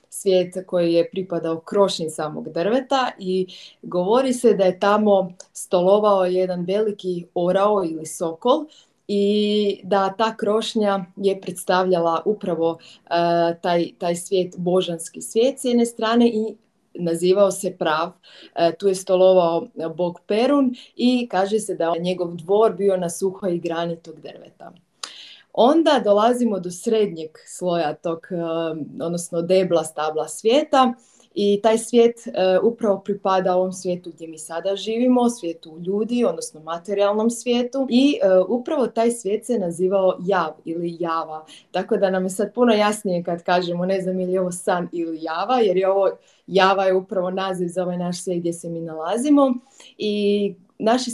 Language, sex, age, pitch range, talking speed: Croatian, female, 30-49, 175-220 Hz, 150 wpm